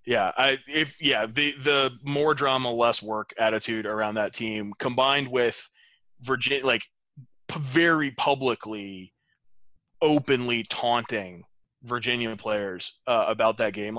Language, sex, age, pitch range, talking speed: English, male, 20-39, 105-130 Hz, 125 wpm